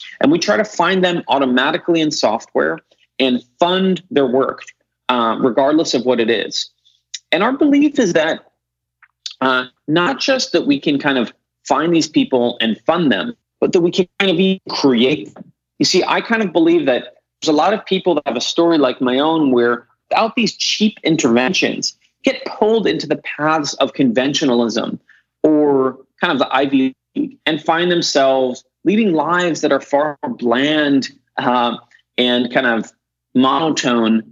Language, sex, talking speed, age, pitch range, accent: English, male, 175 wpm, 30-49, 130-185 Hz, American